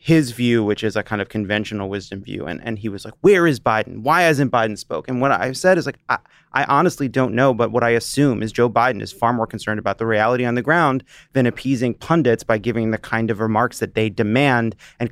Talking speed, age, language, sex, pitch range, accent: 245 wpm, 30-49, English, male, 110-130 Hz, American